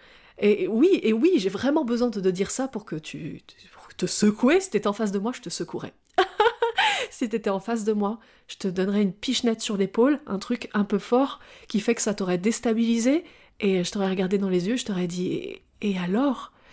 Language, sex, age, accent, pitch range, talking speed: French, female, 30-49, French, 195-245 Hz, 230 wpm